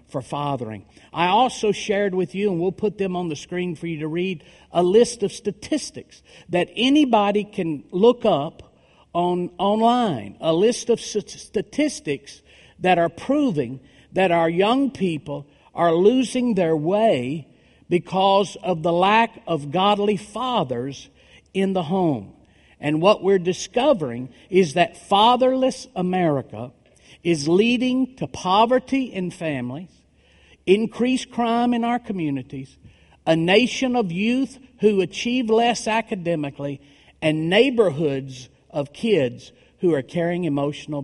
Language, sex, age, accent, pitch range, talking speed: English, male, 50-69, American, 150-225 Hz, 130 wpm